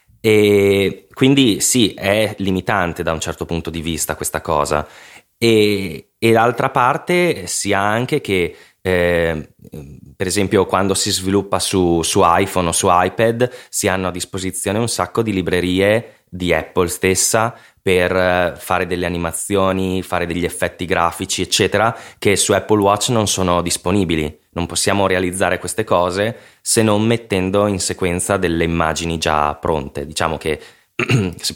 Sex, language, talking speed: male, Italian, 145 wpm